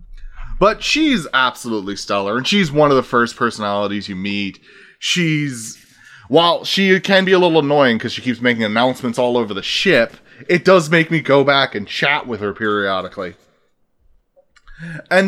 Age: 20-39